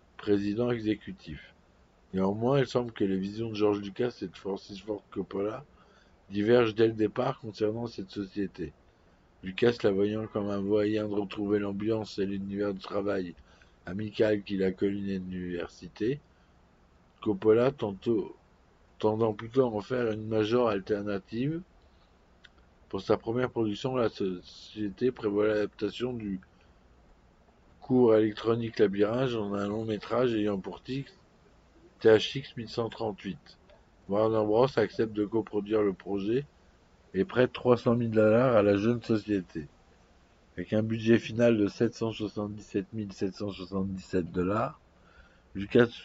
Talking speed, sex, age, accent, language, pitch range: 120 wpm, male, 50-69, French, French, 95-115 Hz